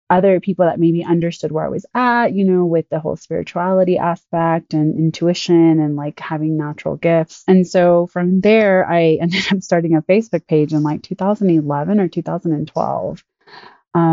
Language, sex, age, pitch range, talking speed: English, female, 20-39, 160-185 Hz, 165 wpm